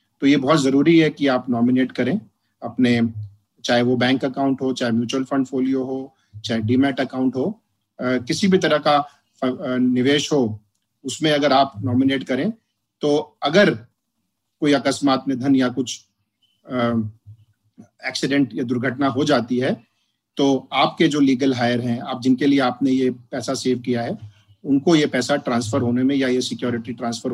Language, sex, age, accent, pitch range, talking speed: Hindi, male, 40-59, native, 115-145 Hz, 165 wpm